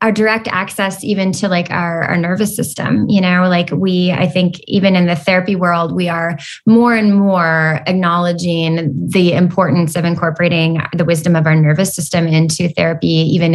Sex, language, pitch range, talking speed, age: female, English, 170-195 Hz, 175 wpm, 20-39